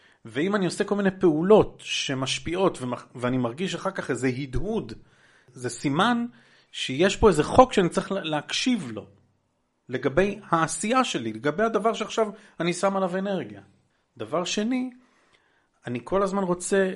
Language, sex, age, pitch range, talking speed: Hebrew, male, 40-59, 125-180 Hz, 140 wpm